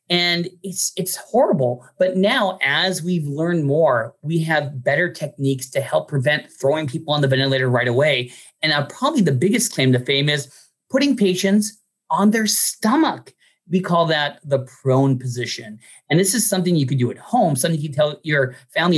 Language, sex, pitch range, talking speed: English, male, 140-195 Hz, 185 wpm